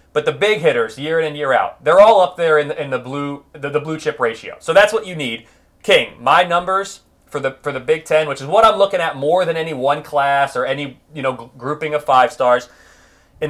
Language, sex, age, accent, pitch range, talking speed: English, male, 30-49, American, 145-195 Hz, 255 wpm